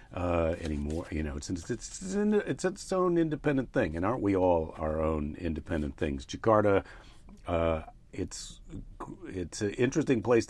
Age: 50-69